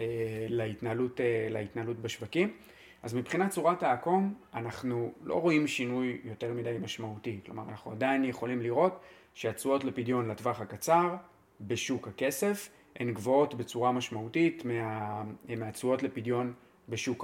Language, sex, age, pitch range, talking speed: Hebrew, male, 30-49, 110-135 Hz, 110 wpm